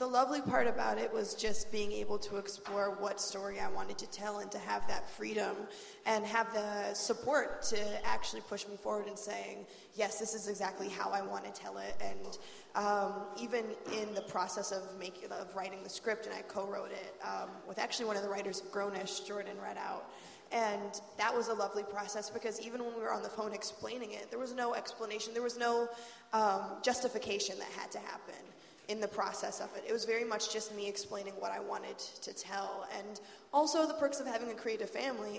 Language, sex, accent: English, female, American